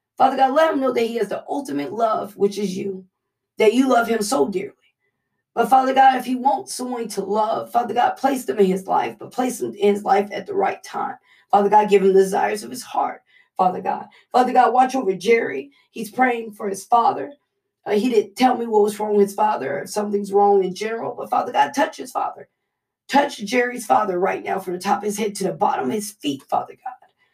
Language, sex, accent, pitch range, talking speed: English, female, American, 205-265 Hz, 240 wpm